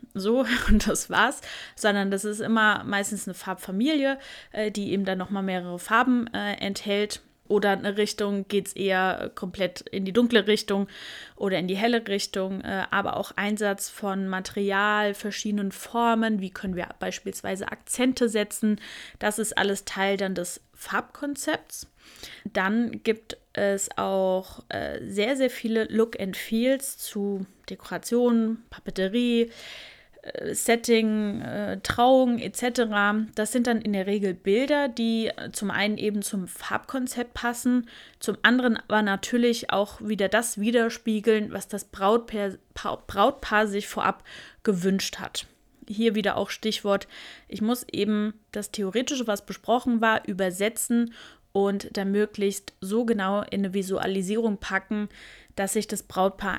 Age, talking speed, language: 20-39, 135 wpm, German